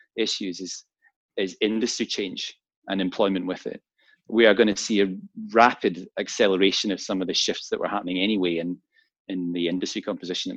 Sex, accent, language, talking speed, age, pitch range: male, British, English, 180 wpm, 30-49, 90-115 Hz